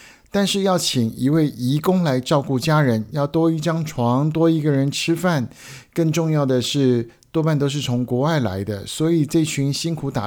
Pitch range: 120-155 Hz